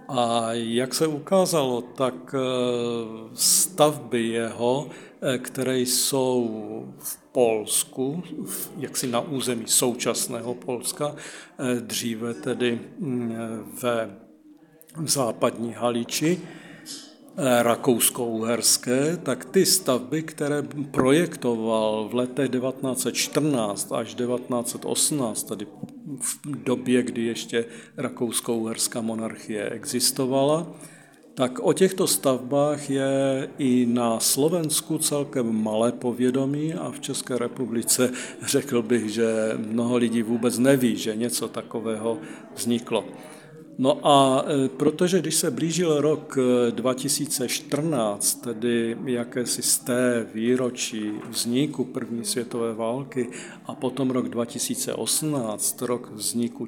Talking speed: 95 wpm